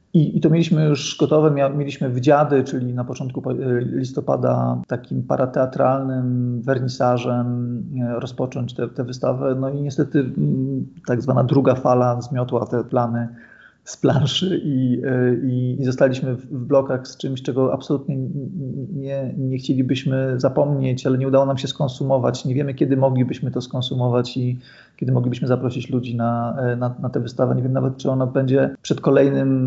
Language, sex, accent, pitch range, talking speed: Polish, male, native, 120-140 Hz, 150 wpm